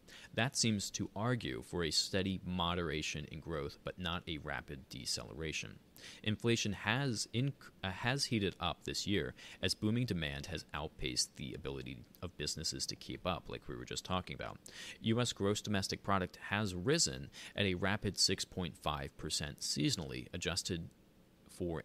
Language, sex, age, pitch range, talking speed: English, male, 30-49, 75-105 Hz, 150 wpm